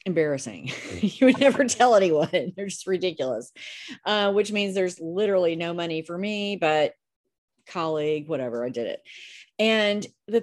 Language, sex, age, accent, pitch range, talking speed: English, female, 40-59, American, 165-220 Hz, 150 wpm